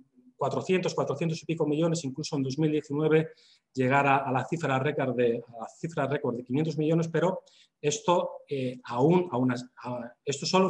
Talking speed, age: 140 wpm, 30-49